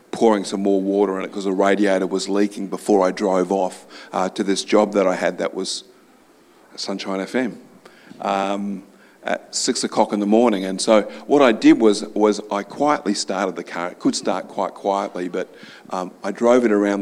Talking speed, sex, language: 200 wpm, male, English